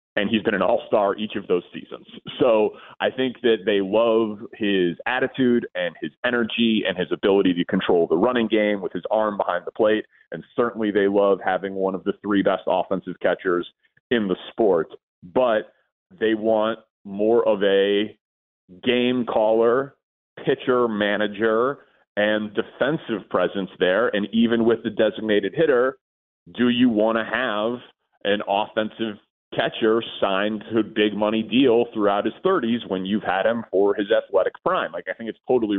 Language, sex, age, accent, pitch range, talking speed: English, male, 30-49, American, 100-120 Hz, 165 wpm